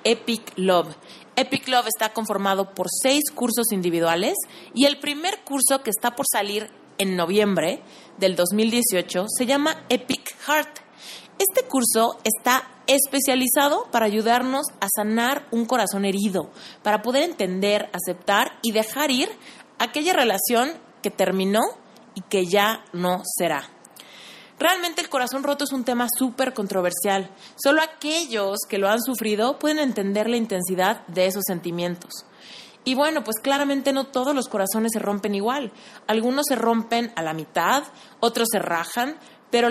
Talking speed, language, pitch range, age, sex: 145 wpm, Spanish, 195-270 Hz, 30-49, female